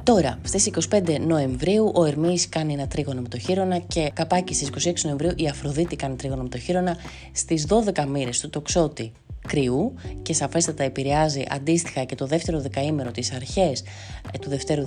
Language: Greek